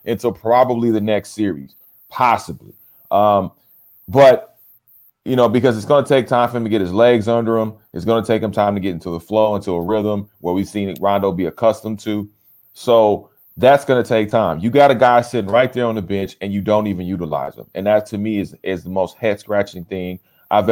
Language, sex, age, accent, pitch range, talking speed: English, male, 30-49, American, 100-115 Hz, 230 wpm